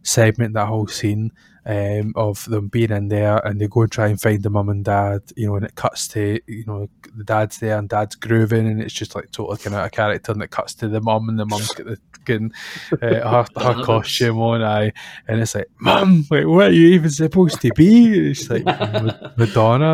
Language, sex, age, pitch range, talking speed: English, male, 20-39, 105-115 Hz, 230 wpm